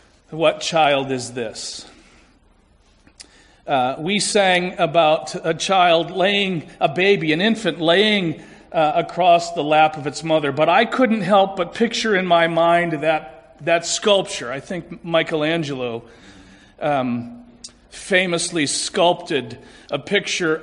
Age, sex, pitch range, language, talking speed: 40-59, male, 135-185 Hz, English, 125 wpm